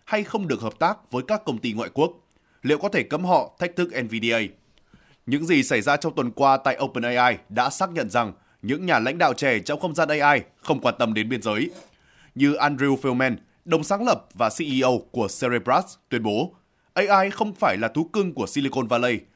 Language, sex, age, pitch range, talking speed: Vietnamese, male, 20-39, 130-175 Hz, 210 wpm